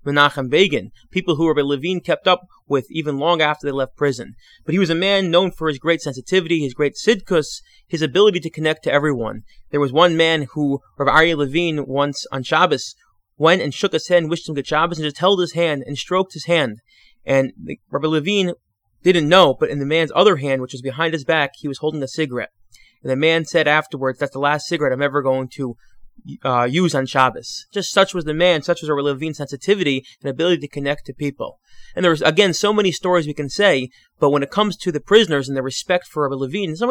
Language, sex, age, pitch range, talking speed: English, male, 20-39, 140-180 Hz, 230 wpm